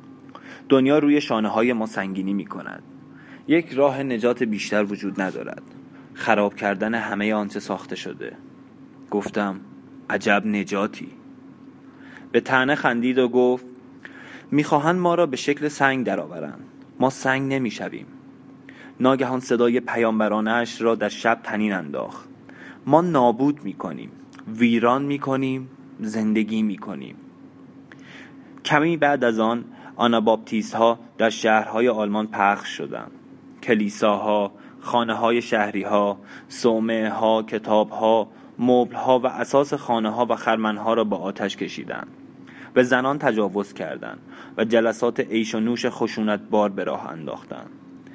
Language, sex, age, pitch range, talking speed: Persian, male, 30-49, 105-130 Hz, 125 wpm